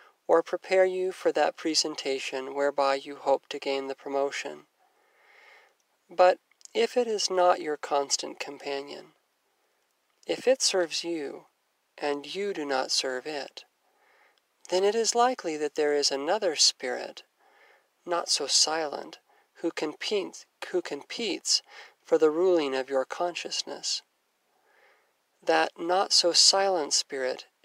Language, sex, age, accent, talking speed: English, male, 40-59, American, 120 wpm